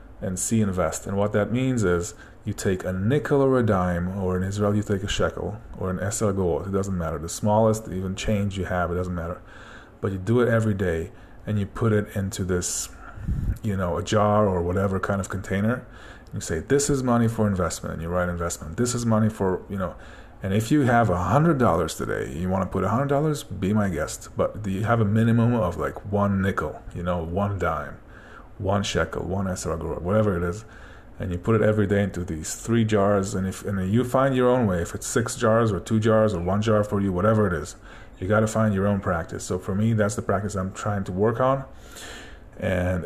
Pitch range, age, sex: 95-110 Hz, 30-49, male